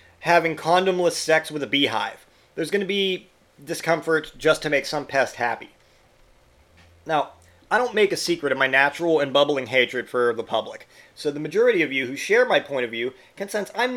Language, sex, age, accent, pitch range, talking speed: English, male, 30-49, American, 145-195 Hz, 200 wpm